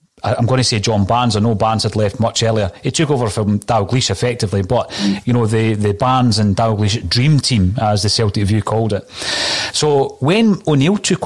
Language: English